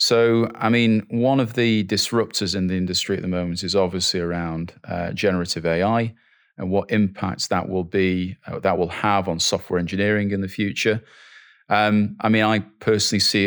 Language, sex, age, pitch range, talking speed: Slovak, male, 30-49, 95-110 Hz, 185 wpm